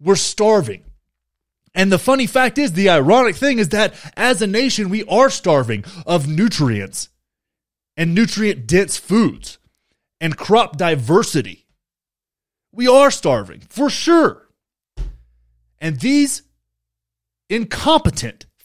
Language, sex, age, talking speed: English, male, 30-49, 110 wpm